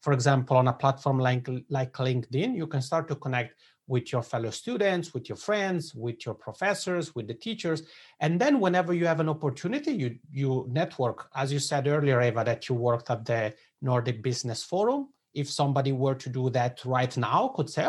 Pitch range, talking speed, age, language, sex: 125-175 Hz, 200 wpm, 30-49, English, male